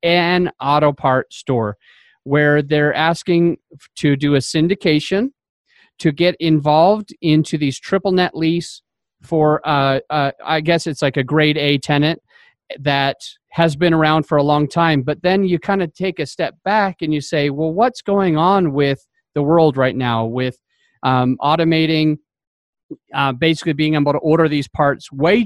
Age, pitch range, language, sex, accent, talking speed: 40-59, 140-175 Hz, English, male, American, 165 wpm